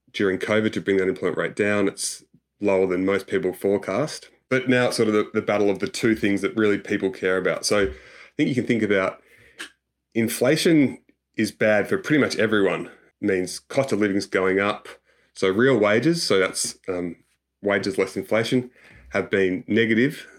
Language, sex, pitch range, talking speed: English, male, 90-110 Hz, 190 wpm